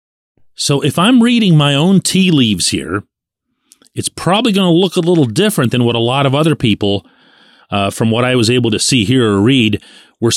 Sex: male